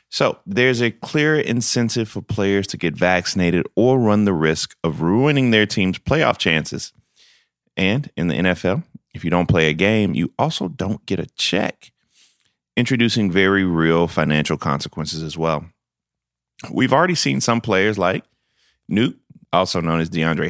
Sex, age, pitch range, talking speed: male, 30-49, 80-110 Hz, 160 wpm